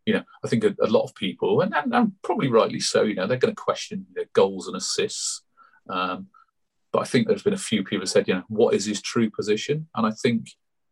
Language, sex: English, male